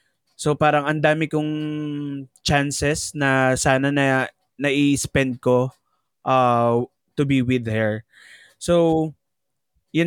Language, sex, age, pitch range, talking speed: Filipino, male, 20-39, 120-150 Hz, 105 wpm